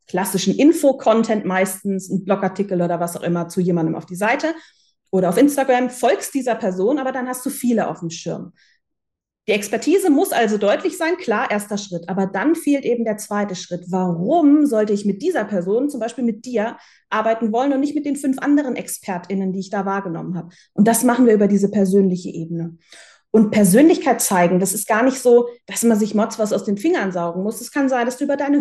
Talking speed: 210 wpm